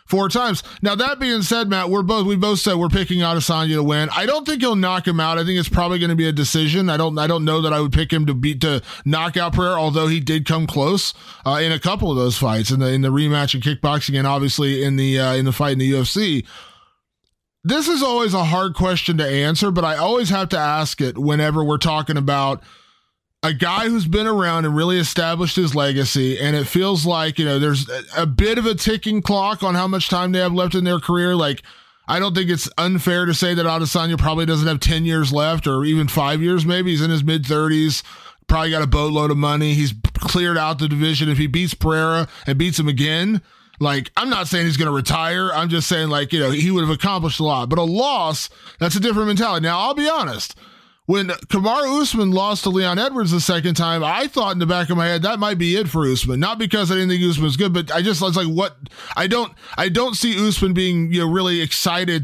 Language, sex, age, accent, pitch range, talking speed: English, male, 20-39, American, 150-190 Hz, 245 wpm